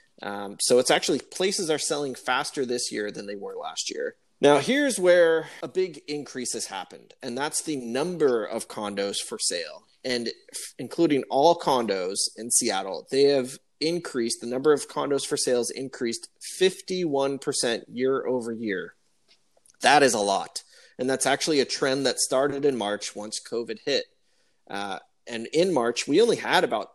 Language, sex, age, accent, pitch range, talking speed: English, male, 30-49, American, 120-170 Hz, 165 wpm